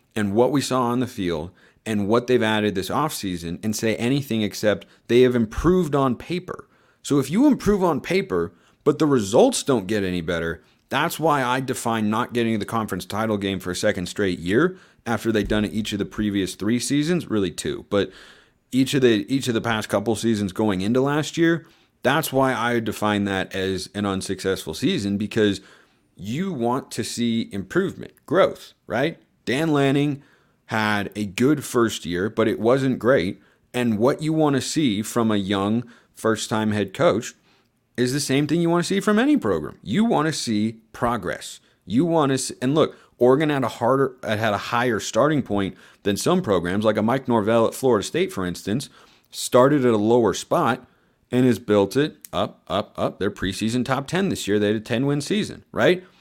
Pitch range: 105-135 Hz